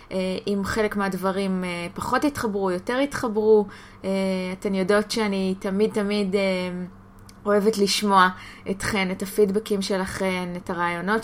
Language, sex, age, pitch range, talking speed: Hebrew, female, 20-39, 195-240 Hz, 105 wpm